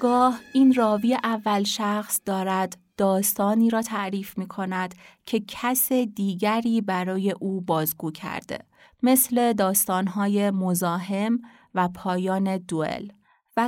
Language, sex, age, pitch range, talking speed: Persian, female, 30-49, 185-225 Hz, 110 wpm